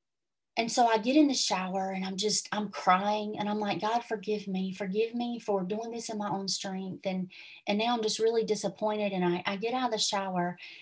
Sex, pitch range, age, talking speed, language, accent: female, 190-225 Hz, 30-49, 235 wpm, English, American